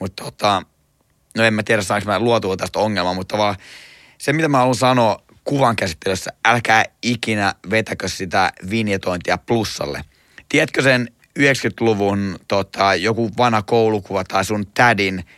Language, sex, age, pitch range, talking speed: Finnish, male, 30-49, 100-120 Hz, 135 wpm